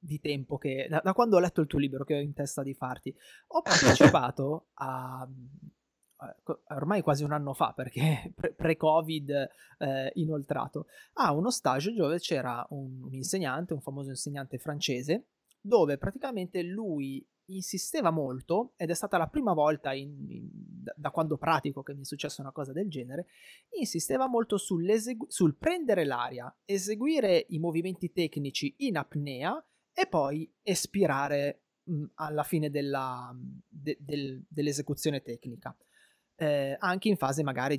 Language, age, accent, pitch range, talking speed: Italian, 20-39, native, 135-180 Hz, 145 wpm